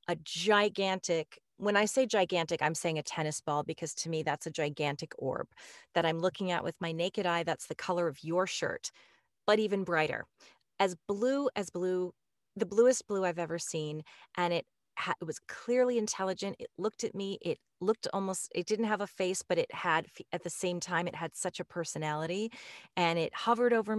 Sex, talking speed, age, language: female, 200 wpm, 30-49, English